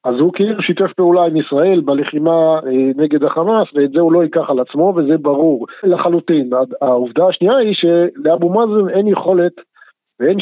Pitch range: 145-180 Hz